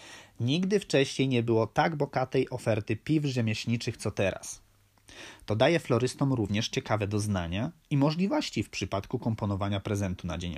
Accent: native